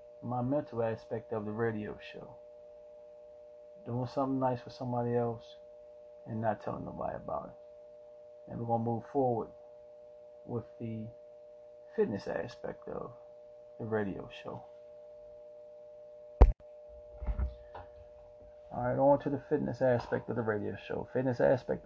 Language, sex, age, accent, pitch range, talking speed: English, male, 30-49, American, 120-135 Hz, 125 wpm